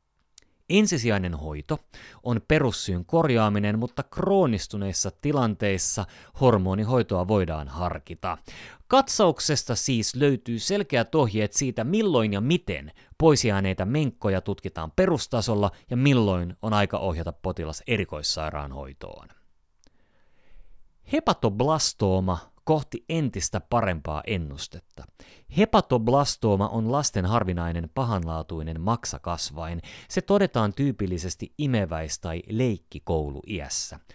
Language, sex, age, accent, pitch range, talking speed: Finnish, male, 30-49, native, 85-125 Hz, 85 wpm